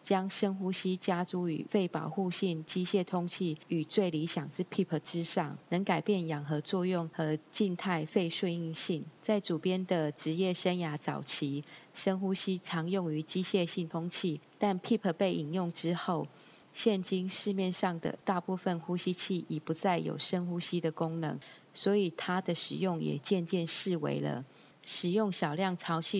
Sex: female